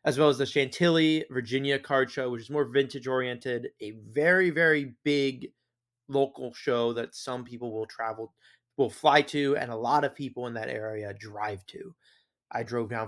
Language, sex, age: English, male, 20-39